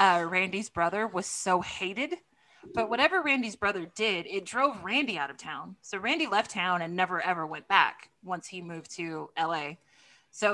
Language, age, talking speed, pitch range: English, 20-39, 180 wpm, 175-220 Hz